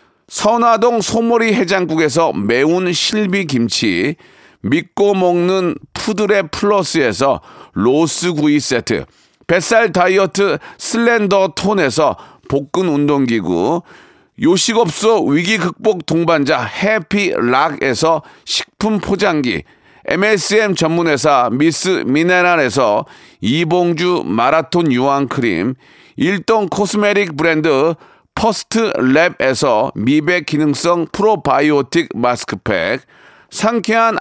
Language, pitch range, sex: Korean, 160-210 Hz, male